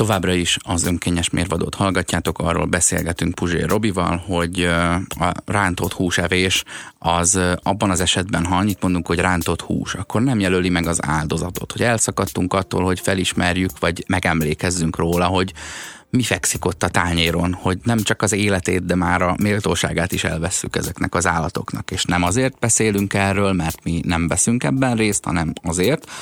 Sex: male